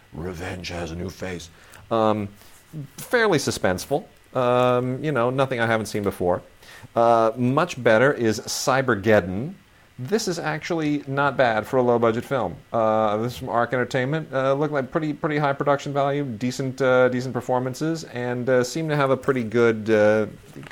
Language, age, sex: English, 40-59, male